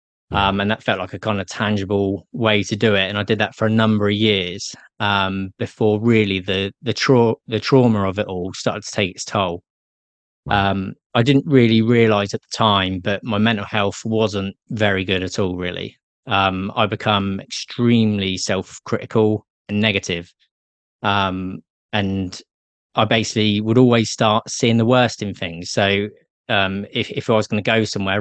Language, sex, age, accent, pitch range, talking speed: English, male, 20-39, British, 100-110 Hz, 180 wpm